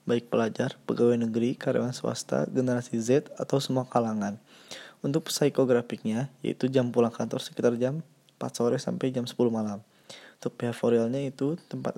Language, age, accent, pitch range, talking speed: Indonesian, 20-39, native, 120-135 Hz, 145 wpm